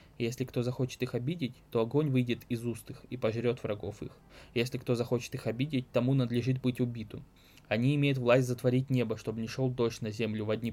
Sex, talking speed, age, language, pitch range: male, 205 wpm, 20-39, Russian, 115-130 Hz